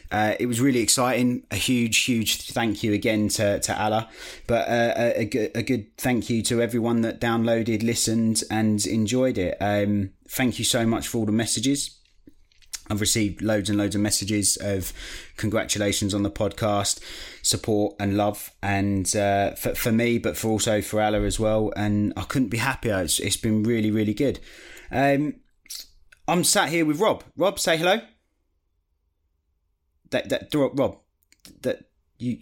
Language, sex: English, male